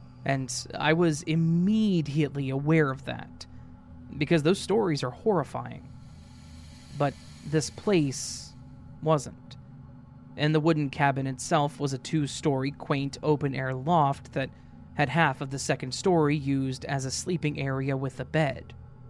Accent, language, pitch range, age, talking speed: American, English, 130-155 Hz, 20-39, 130 wpm